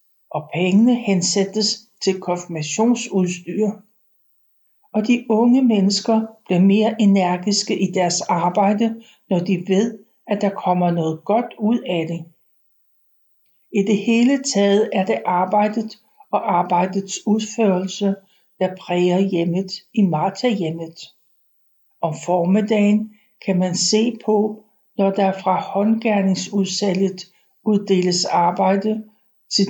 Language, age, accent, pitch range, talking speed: Danish, 60-79, native, 185-220 Hz, 110 wpm